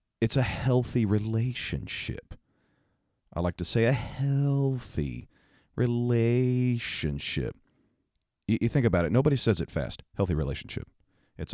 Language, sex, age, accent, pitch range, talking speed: English, male, 40-59, American, 85-115 Hz, 115 wpm